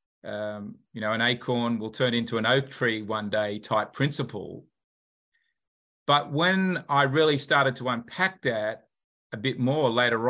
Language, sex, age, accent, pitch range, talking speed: English, male, 40-59, Australian, 115-140 Hz, 155 wpm